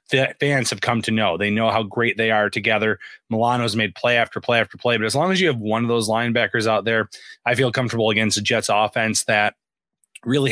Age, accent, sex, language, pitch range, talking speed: 20-39, American, male, English, 110-120 Hz, 235 wpm